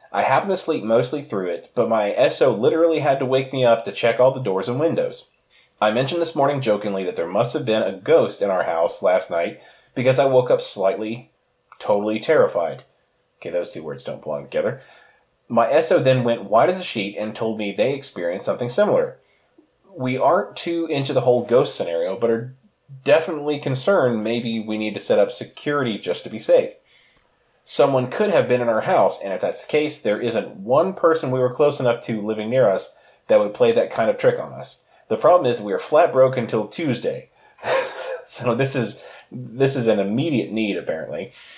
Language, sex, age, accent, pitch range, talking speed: English, male, 30-49, American, 120-175 Hz, 205 wpm